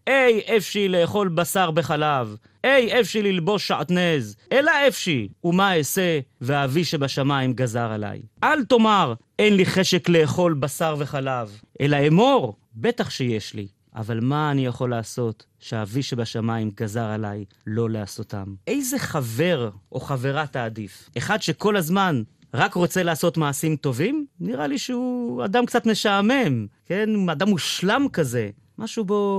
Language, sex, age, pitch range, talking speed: Hebrew, male, 30-49, 125-195 Hz, 135 wpm